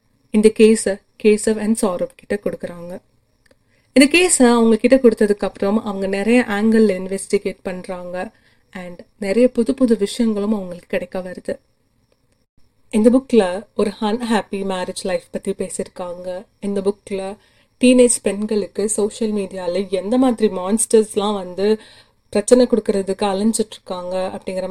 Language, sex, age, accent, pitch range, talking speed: Tamil, female, 30-49, native, 185-225 Hz, 115 wpm